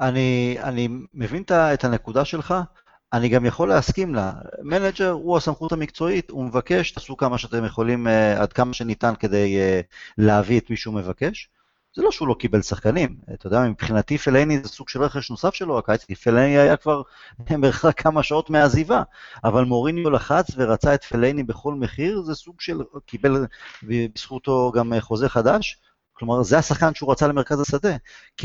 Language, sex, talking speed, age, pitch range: Hebrew, male, 165 wpm, 30-49, 115-150 Hz